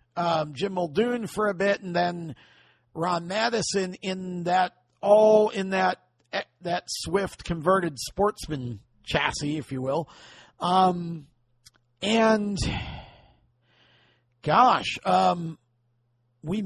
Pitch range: 135-180 Hz